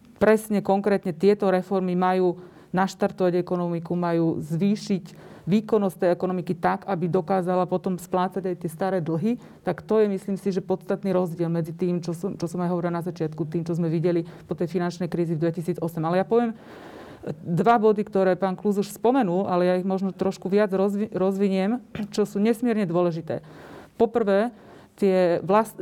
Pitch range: 175-200 Hz